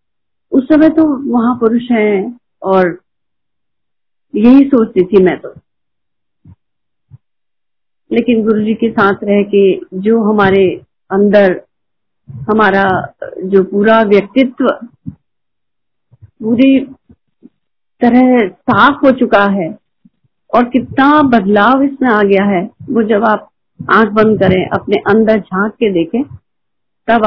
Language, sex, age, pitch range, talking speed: Hindi, female, 50-69, 200-250 Hz, 110 wpm